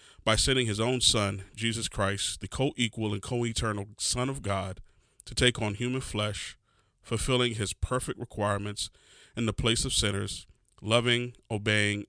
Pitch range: 100-120 Hz